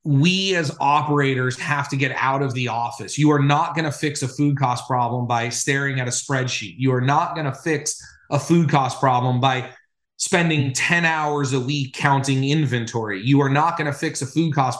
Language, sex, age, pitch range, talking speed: English, male, 30-49, 135-165 Hz, 210 wpm